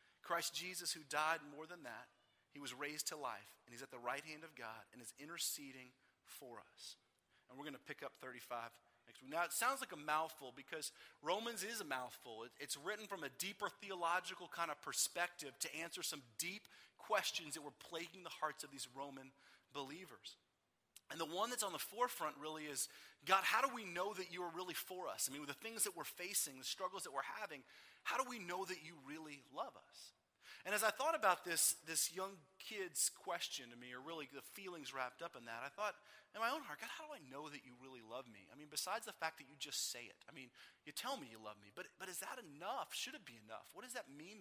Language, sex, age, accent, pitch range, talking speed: English, male, 30-49, American, 140-195 Hz, 240 wpm